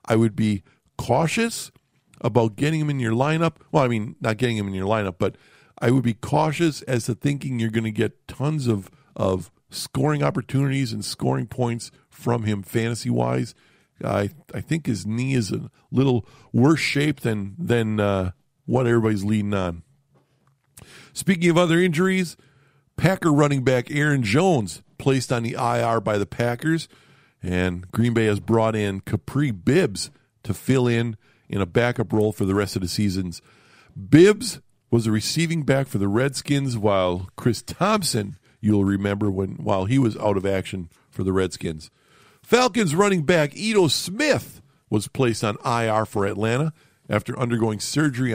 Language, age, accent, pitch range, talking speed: English, 50-69, American, 105-140 Hz, 165 wpm